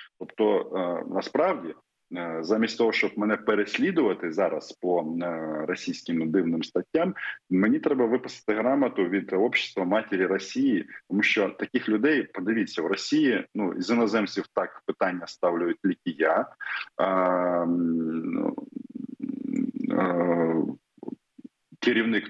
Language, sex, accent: Russian, male, native